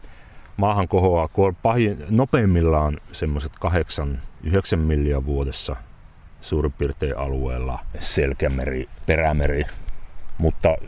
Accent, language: native, Finnish